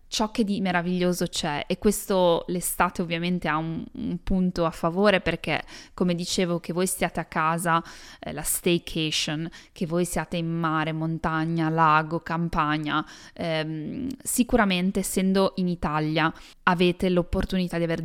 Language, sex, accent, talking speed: Italian, female, native, 145 wpm